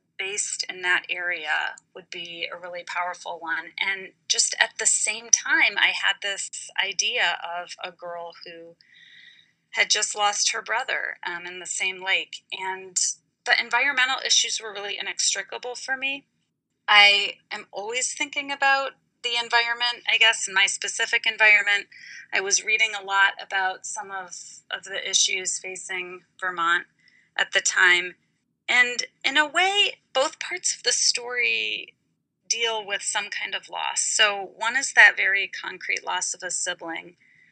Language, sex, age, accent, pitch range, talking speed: English, female, 30-49, American, 180-235 Hz, 155 wpm